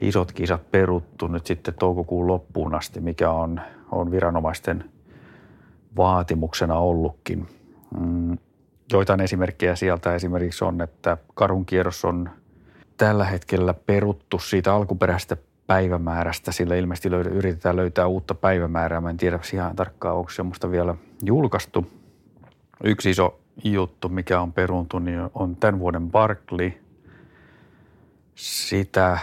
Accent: native